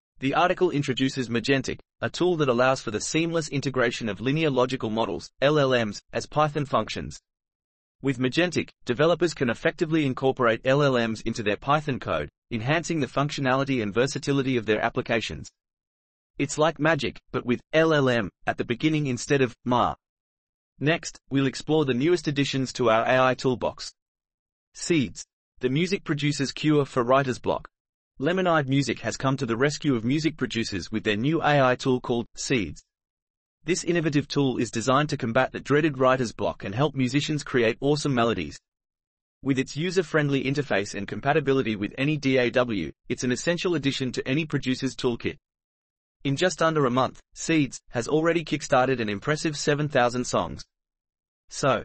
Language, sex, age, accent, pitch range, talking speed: English, male, 30-49, Australian, 120-150 Hz, 155 wpm